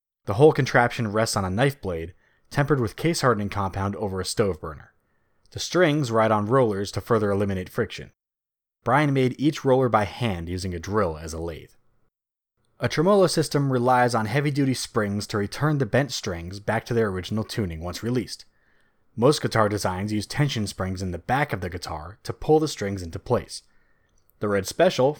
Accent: American